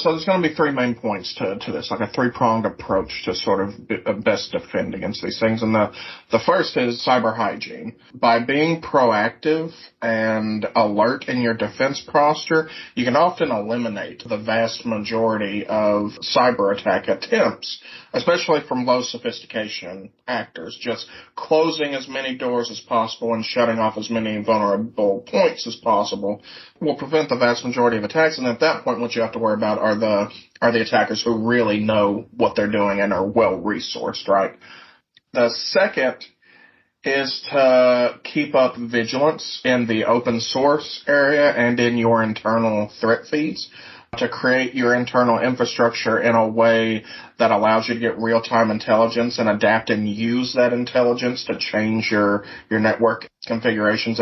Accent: American